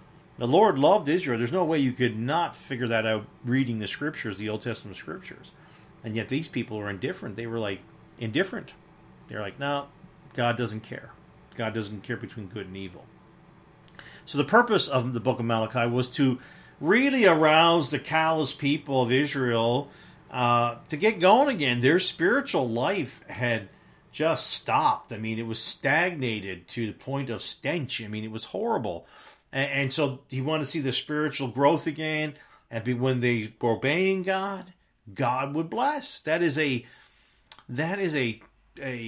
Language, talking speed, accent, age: English, 175 wpm, American, 40-59